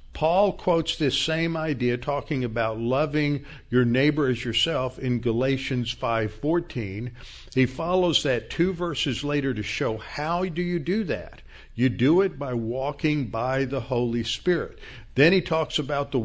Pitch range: 115-150 Hz